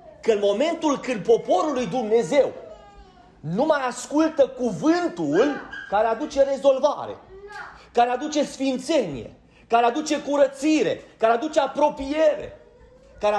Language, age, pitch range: Romanian, 40-59, 215-285 Hz